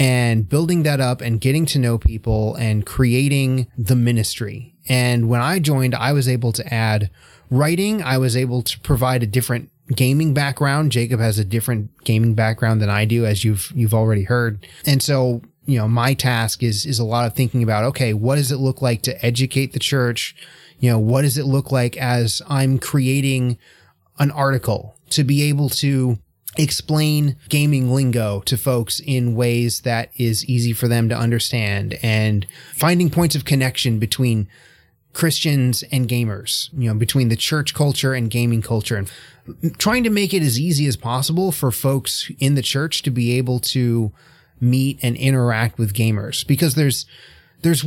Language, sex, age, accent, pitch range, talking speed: English, male, 20-39, American, 115-140 Hz, 180 wpm